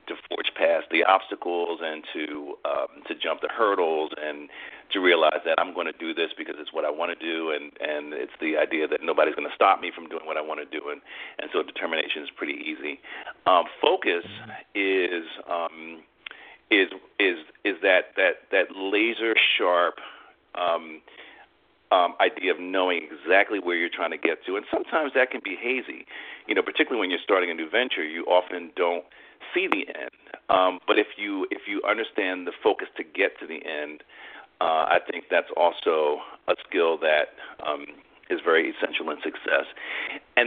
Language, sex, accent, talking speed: English, male, American, 190 wpm